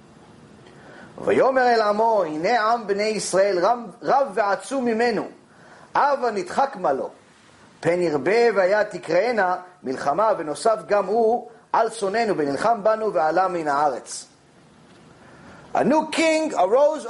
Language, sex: English, male